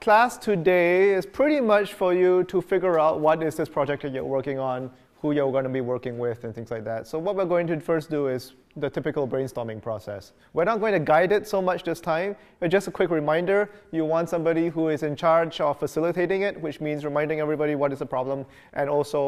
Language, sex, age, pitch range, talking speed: English, male, 30-49, 130-170 Hz, 235 wpm